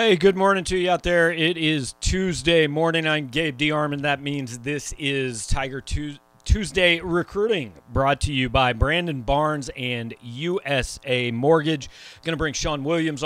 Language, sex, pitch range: English, male, 130-155 Hz